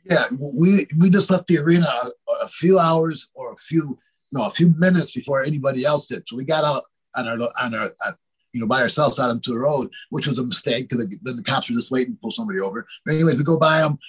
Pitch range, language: 140-175 Hz, English